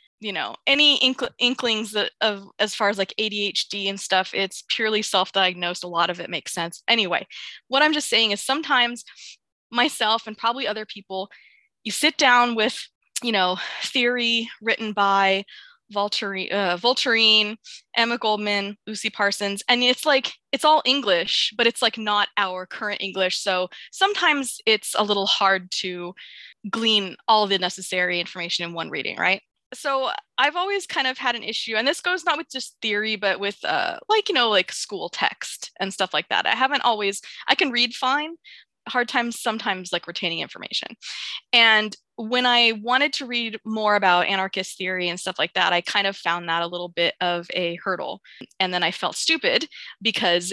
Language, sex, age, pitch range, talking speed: English, female, 20-39, 190-245 Hz, 180 wpm